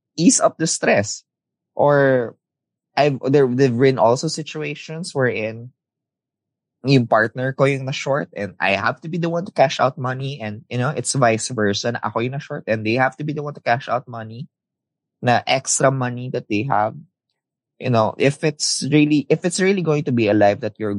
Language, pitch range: Filipino, 105-145 Hz